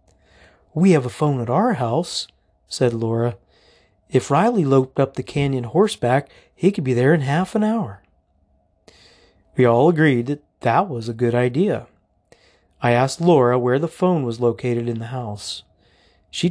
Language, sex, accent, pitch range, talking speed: English, male, American, 110-155 Hz, 165 wpm